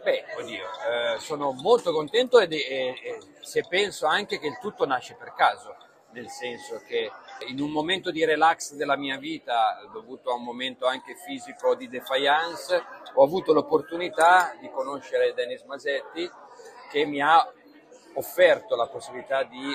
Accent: native